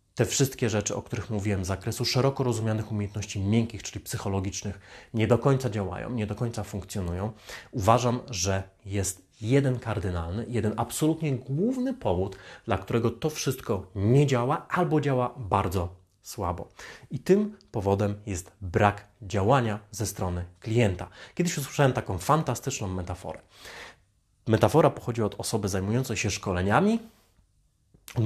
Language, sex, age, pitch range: Polish, male, 30-49, 95-130 Hz